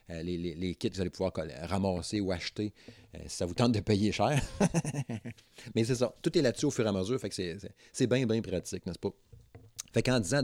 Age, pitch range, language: 30-49, 95-115 Hz, French